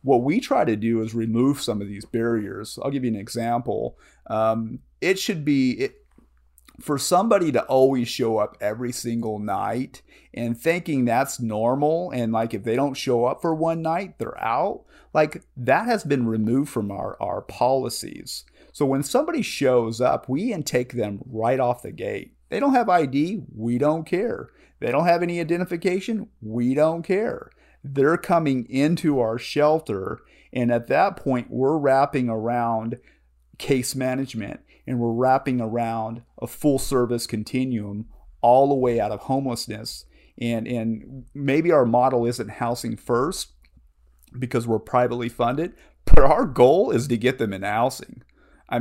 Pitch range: 115-140 Hz